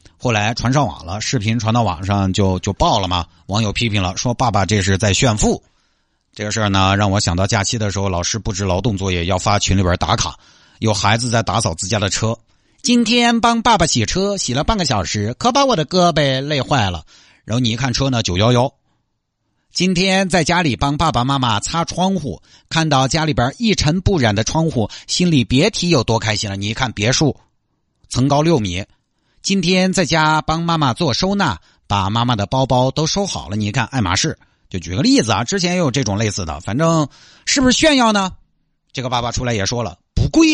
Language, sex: Chinese, male